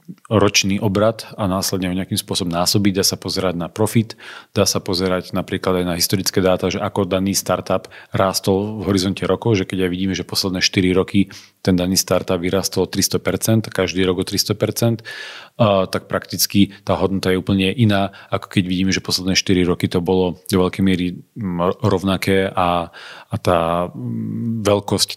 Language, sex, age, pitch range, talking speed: Slovak, male, 40-59, 90-100 Hz, 165 wpm